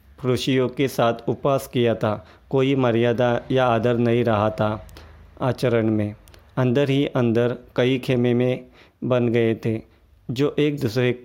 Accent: native